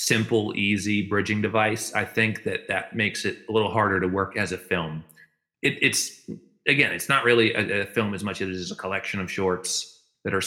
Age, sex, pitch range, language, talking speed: 30-49, male, 90-115 Hz, English, 210 wpm